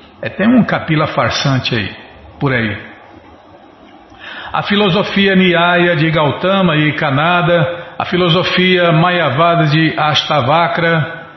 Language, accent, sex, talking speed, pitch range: Portuguese, Brazilian, male, 105 wpm, 140-195 Hz